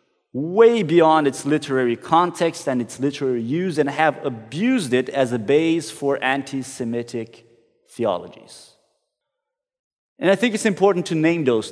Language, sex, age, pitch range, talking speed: English, male, 30-49, 130-200 Hz, 140 wpm